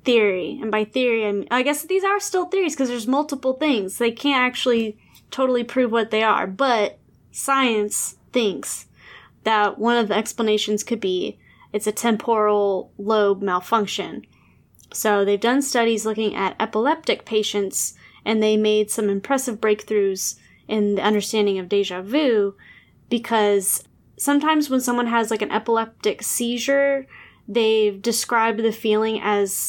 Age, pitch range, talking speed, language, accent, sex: 10-29, 205-245 Hz, 150 wpm, English, American, female